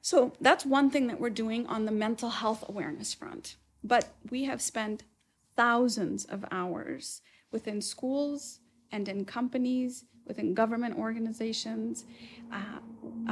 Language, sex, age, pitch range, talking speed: English, female, 30-49, 215-255 Hz, 130 wpm